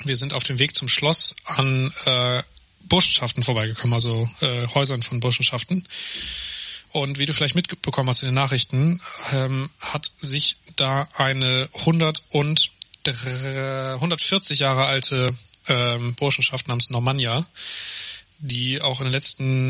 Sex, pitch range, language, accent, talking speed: male, 125-145 Hz, German, German, 130 wpm